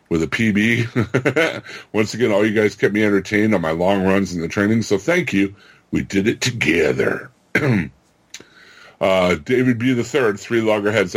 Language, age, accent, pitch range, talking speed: English, 60-79, American, 90-110 Hz, 165 wpm